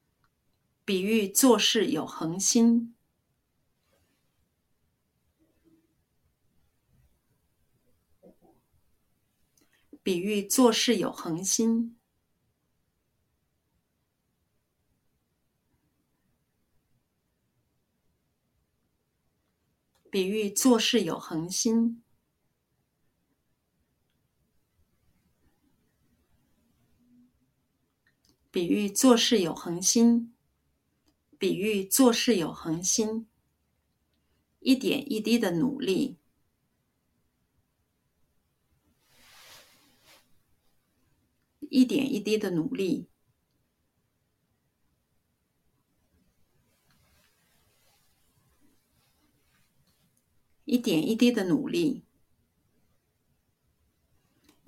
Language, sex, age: Chinese, female, 50-69